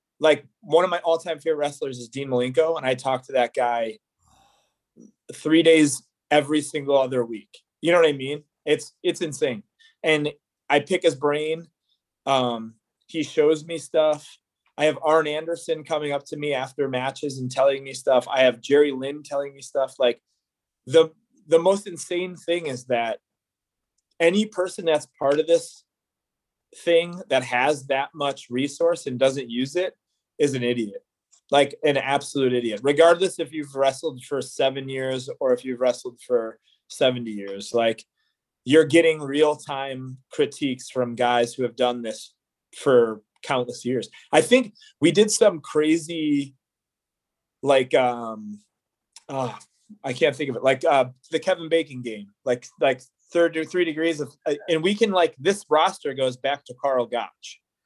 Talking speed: 165 wpm